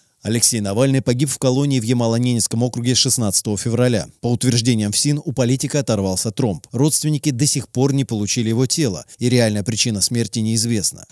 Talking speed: 165 wpm